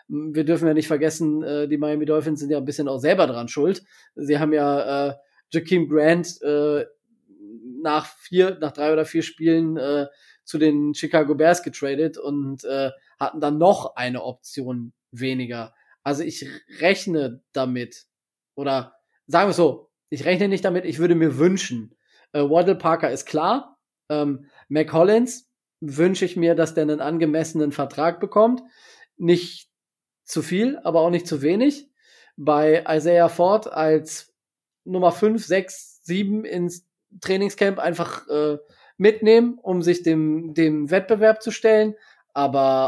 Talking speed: 150 wpm